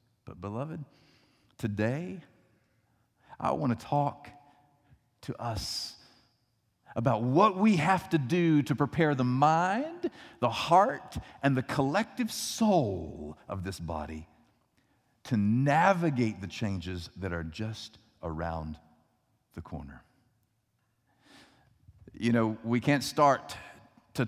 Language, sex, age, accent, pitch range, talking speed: English, male, 50-69, American, 115-145 Hz, 110 wpm